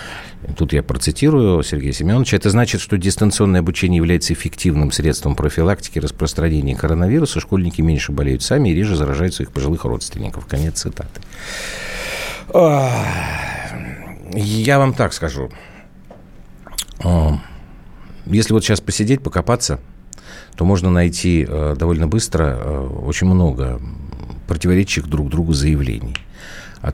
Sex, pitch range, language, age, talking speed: male, 70-95 Hz, Russian, 50-69, 110 wpm